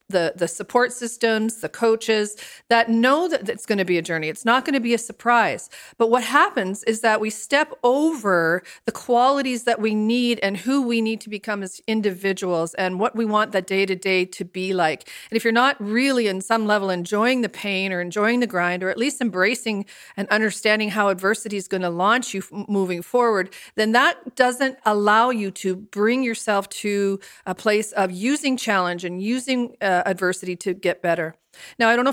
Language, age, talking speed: English, 40-59, 200 wpm